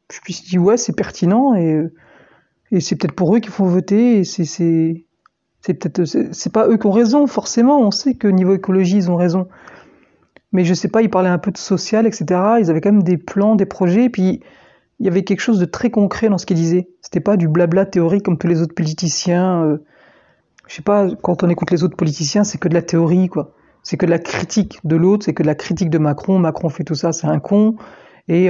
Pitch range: 170-200 Hz